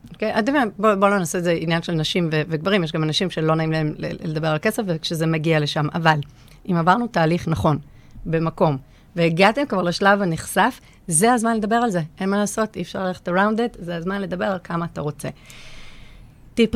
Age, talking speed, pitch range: 30-49, 195 wpm, 160-195 Hz